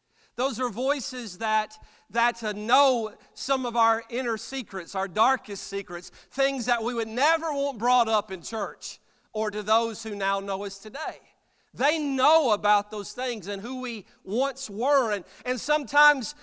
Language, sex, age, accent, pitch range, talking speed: English, male, 40-59, American, 195-250 Hz, 165 wpm